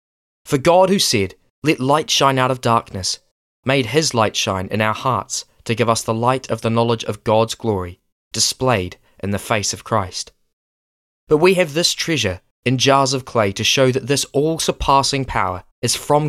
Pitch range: 95-135 Hz